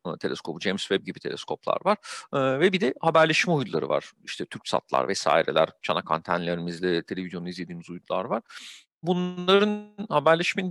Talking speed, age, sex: 135 wpm, 40-59, male